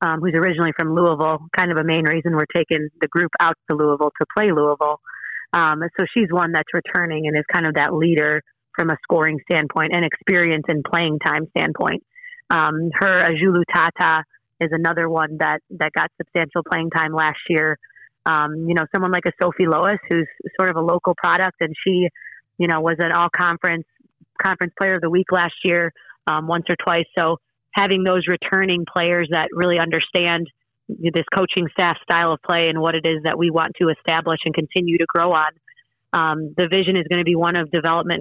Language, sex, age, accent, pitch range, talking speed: English, female, 30-49, American, 160-175 Hz, 200 wpm